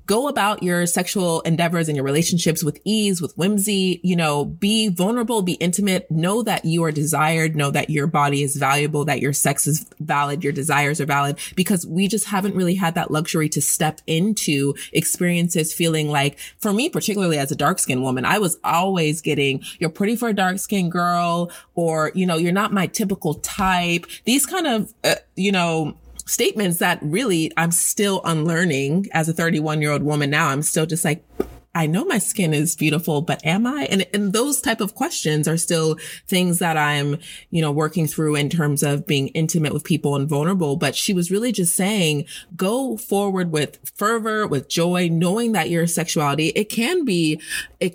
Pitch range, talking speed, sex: 150-195 Hz, 190 wpm, female